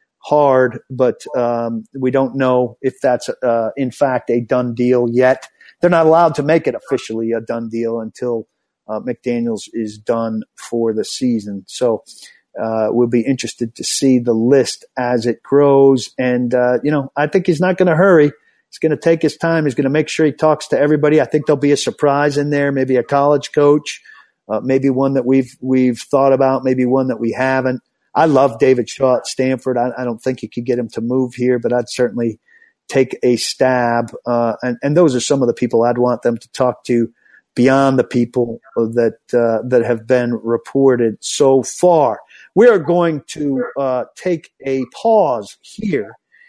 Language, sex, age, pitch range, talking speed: English, male, 50-69, 120-145 Hz, 200 wpm